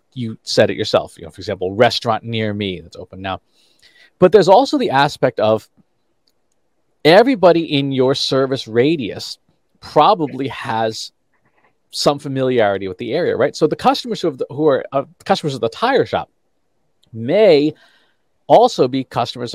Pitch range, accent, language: 110-150 Hz, American, English